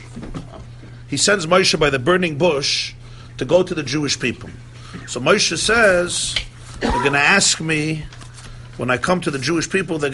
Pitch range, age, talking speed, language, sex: 120-175 Hz, 50-69, 170 wpm, English, male